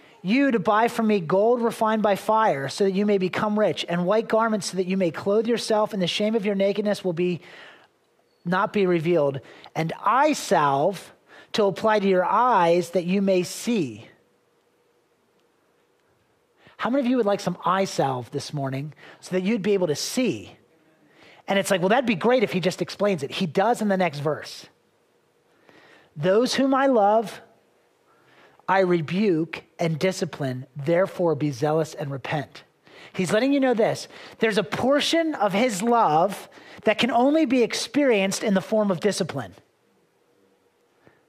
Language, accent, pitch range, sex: English, American, 180-230 Hz, male